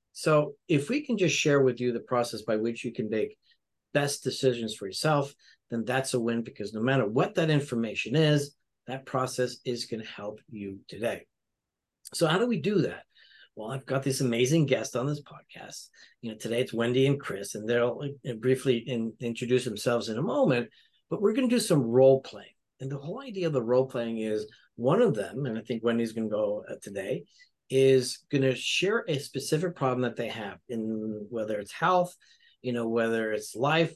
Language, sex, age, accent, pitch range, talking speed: English, male, 50-69, American, 115-150 Hz, 200 wpm